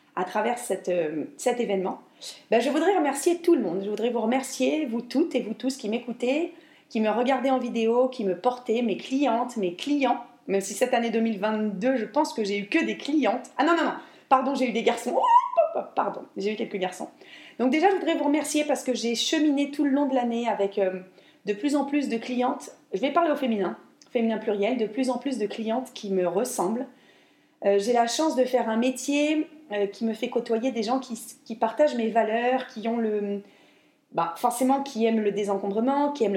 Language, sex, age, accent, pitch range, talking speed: French, female, 30-49, French, 215-280 Hz, 220 wpm